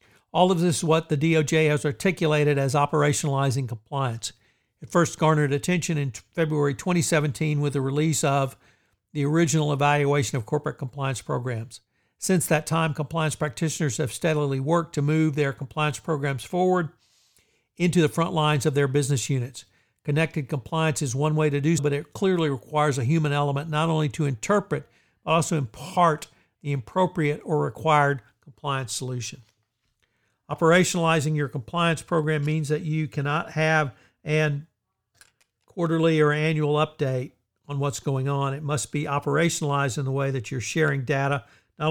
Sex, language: male, English